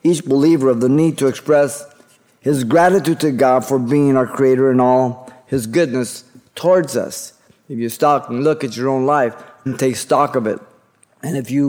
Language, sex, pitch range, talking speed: English, male, 125-150 Hz, 195 wpm